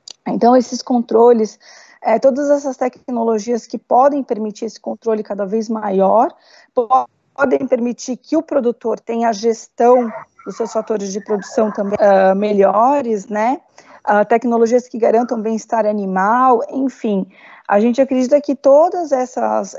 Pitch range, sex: 210-255 Hz, female